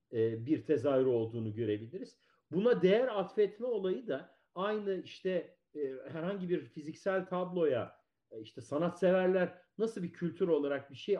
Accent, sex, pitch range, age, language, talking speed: native, male, 145-190 Hz, 50-69, Turkish, 125 wpm